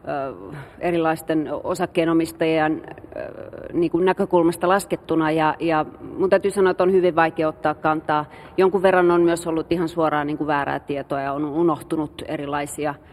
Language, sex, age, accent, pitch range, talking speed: Finnish, female, 30-49, native, 145-170 Hz, 140 wpm